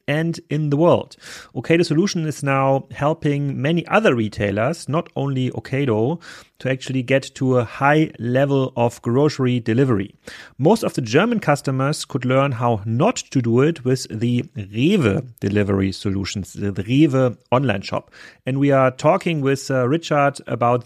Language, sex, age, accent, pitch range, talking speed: English, male, 30-49, German, 120-145 Hz, 155 wpm